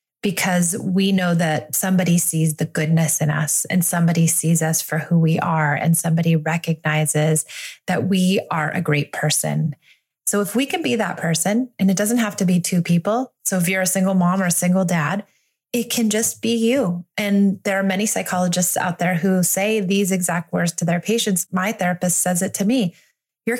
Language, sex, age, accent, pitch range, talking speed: English, female, 20-39, American, 165-200 Hz, 200 wpm